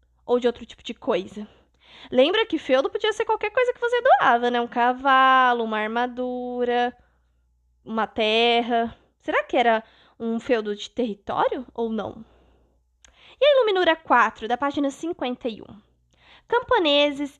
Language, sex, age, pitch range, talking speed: Portuguese, female, 10-29, 225-310 Hz, 140 wpm